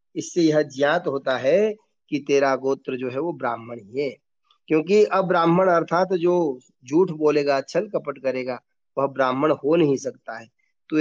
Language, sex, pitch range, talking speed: Hindi, male, 130-170 Hz, 170 wpm